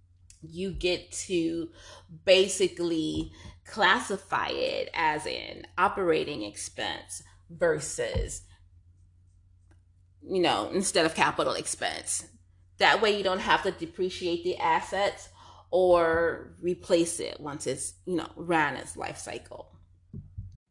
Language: English